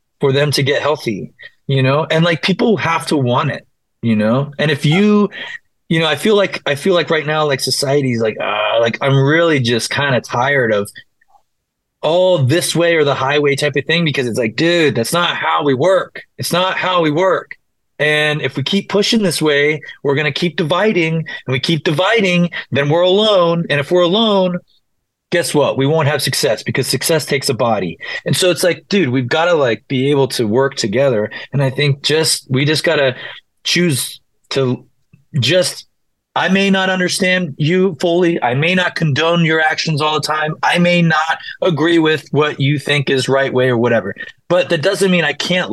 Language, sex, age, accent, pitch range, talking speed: English, male, 30-49, American, 135-175 Hz, 205 wpm